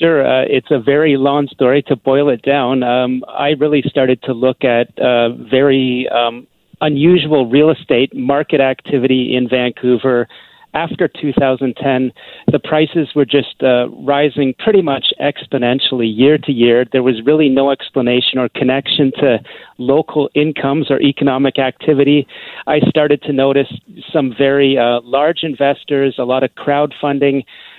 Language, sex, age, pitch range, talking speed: English, male, 40-59, 130-150 Hz, 145 wpm